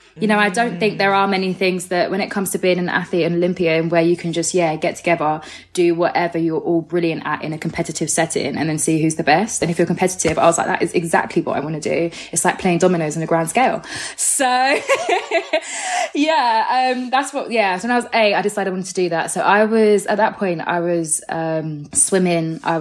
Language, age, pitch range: English, 20-39, 160-195 Hz